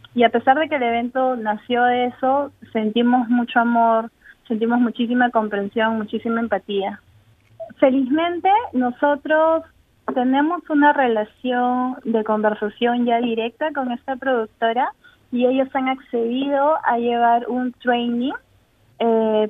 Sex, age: female, 20-39